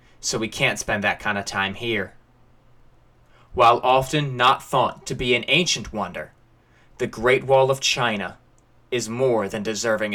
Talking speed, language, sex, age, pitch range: 160 wpm, English, male, 20-39, 120-145 Hz